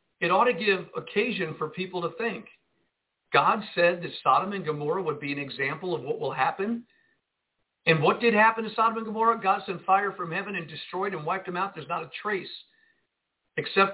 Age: 50-69